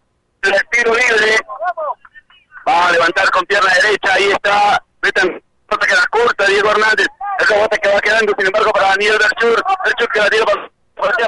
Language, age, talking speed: Spanish, 50-69, 160 wpm